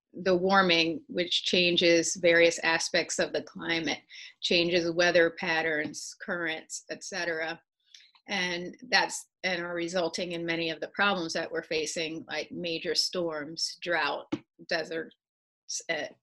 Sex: female